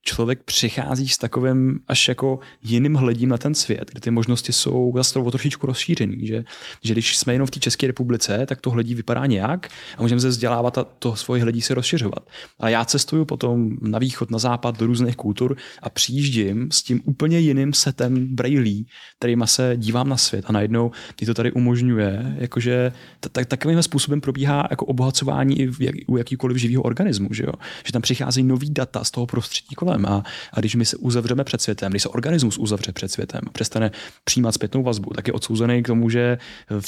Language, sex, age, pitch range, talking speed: Czech, male, 30-49, 115-130 Hz, 190 wpm